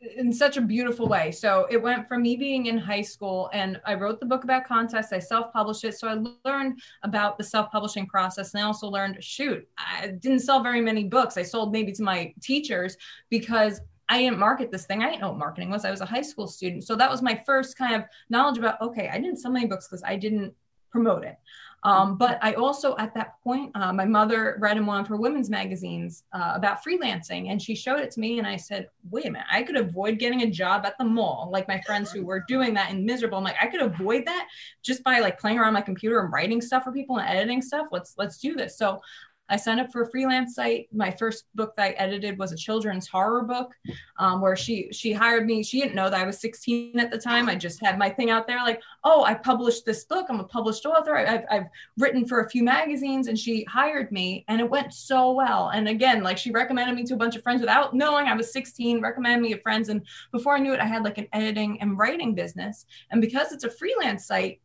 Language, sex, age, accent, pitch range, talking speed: English, female, 20-39, American, 200-250 Hz, 250 wpm